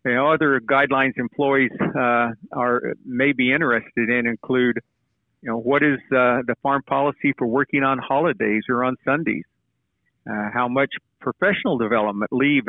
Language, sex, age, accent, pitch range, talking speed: English, male, 50-69, American, 115-135 Hz, 155 wpm